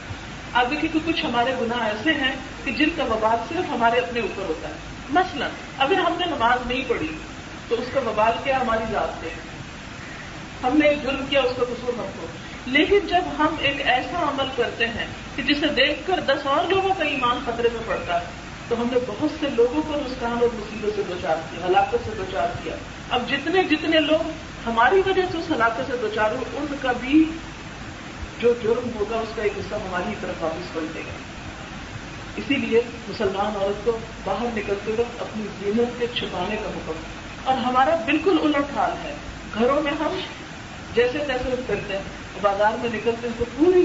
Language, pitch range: Urdu, 230-295 Hz